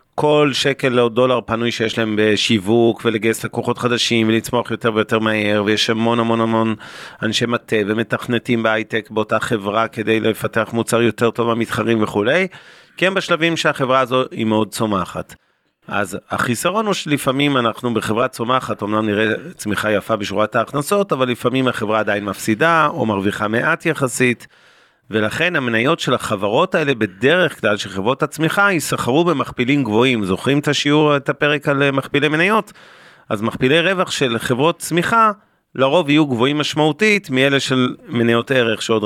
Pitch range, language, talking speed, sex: 110-145 Hz, Hebrew, 150 wpm, male